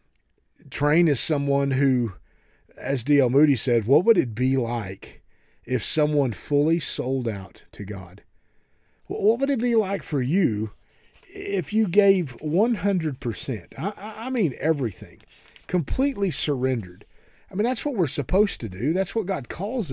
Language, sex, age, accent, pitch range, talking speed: English, male, 40-59, American, 125-195 Hz, 150 wpm